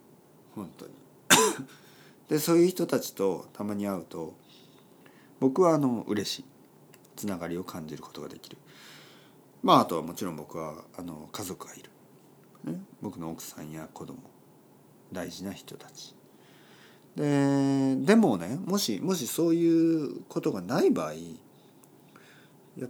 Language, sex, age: Japanese, male, 40-59